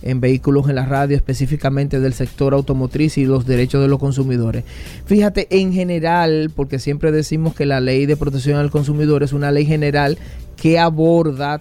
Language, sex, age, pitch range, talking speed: Spanish, male, 30-49, 135-160 Hz, 175 wpm